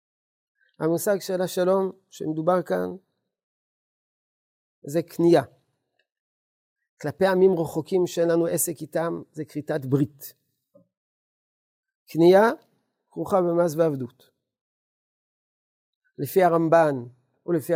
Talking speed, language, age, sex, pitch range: 80 wpm, Hebrew, 50-69, male, 140-190 Hz